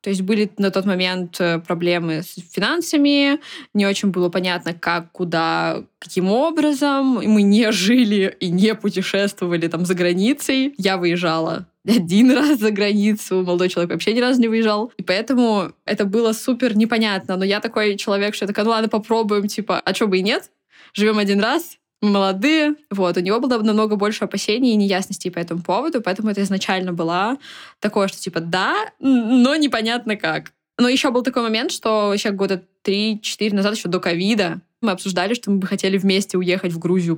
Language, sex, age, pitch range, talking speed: Russian, female, 20-39, 185-235 Hz, 180 wpm